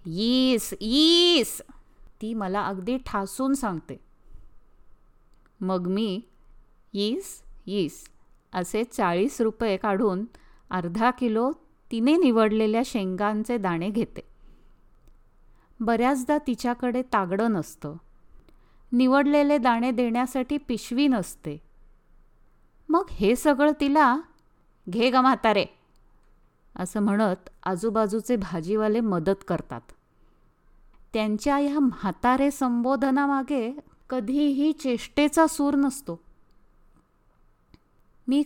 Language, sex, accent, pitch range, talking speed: Marathi, female, native, 200-270 Hz, 80 wpm